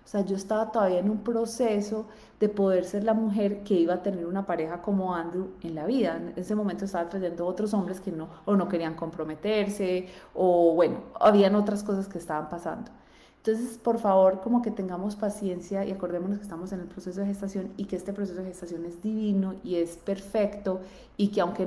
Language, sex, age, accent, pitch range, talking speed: Spanish, female, 30-49, Colombian, 175-210 Hz, 210 wpm